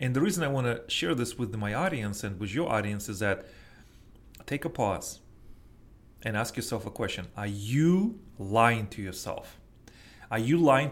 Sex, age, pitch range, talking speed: male, 30-49, 105-125 Hz, 180 wpm